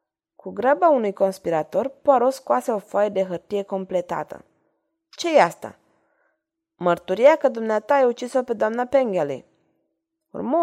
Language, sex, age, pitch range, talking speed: Romanian, female, 20-39, 190-260 Hz, 130 wpm